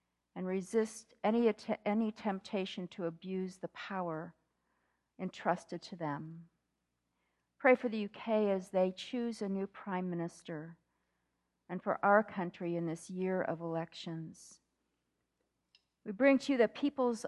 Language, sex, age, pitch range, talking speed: English, female, 50-69, 165-210 Hz, 135 wpm